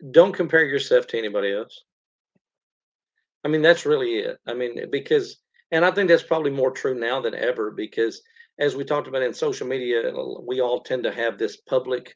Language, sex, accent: English, male, American